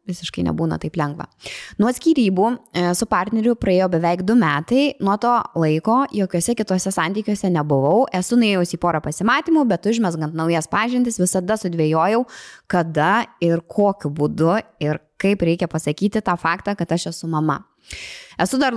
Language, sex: English, female